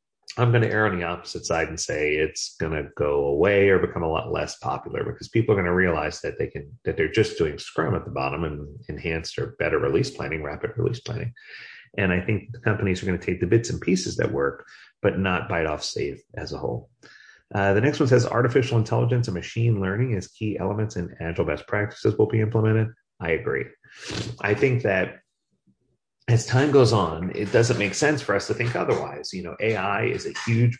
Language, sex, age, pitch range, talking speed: English, male, 30-49, 85-115 Hz, 220 wpm